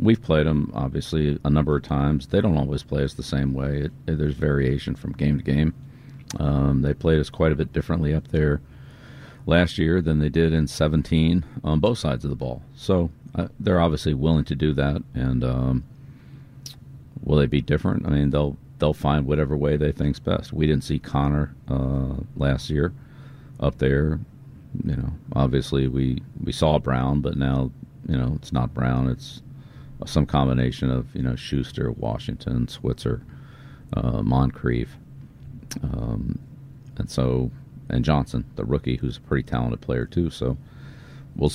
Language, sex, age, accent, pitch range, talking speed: English, male, 50-69, American, 70-80 Hz, 170 wpm